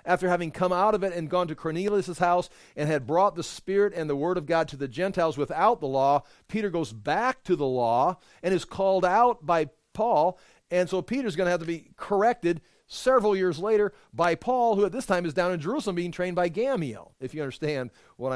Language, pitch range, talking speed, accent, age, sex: English, 140-180 Hz, 225 wpm, American, 40-59, male